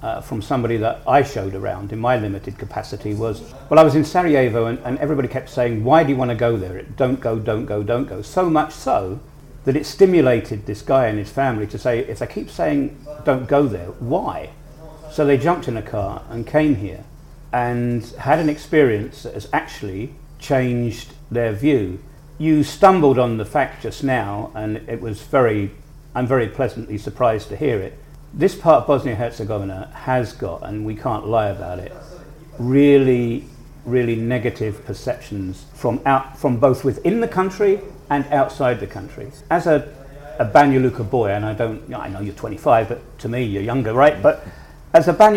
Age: 50-69